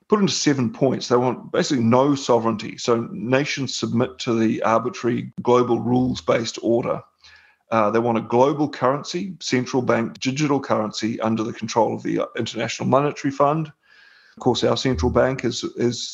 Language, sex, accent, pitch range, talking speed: English, male, Australian, 120-140 Hz, 160 wpm